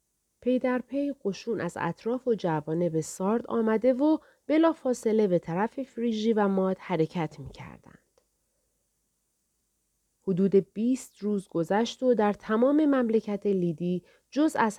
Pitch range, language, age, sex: 160-235 Hz, Persian, 30-49, female